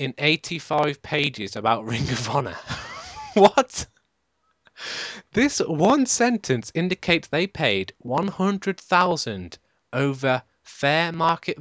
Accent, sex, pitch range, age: British, male, 125-175 Hz, 30-49